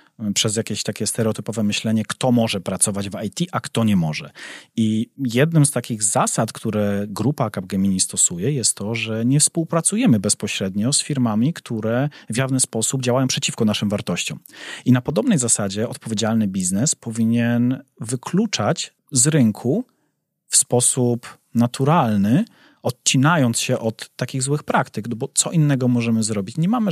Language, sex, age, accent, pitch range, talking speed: Polish, male, 30-49, native, 110-130 Hz, 145 wpm